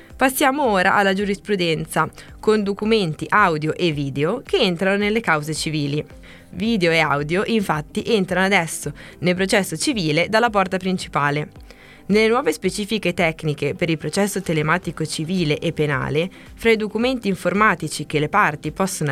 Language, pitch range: Italian, 155-210 Hz